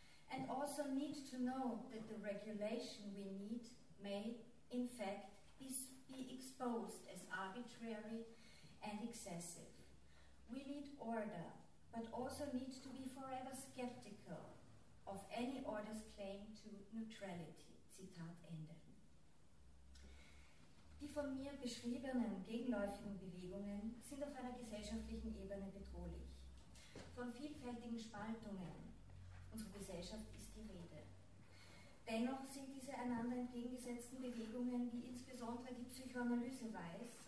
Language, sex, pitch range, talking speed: German, female, 190-245 Hz, 110 wpm